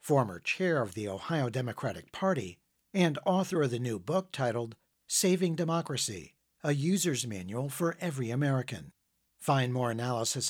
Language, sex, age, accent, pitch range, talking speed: English, male, 60-79, American, 115-165 Hz, 145 wpm